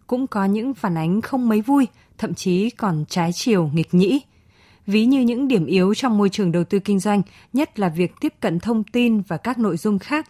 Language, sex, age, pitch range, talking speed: Vietnamese, female, 20-39, 175-230 Hz, 225 wpm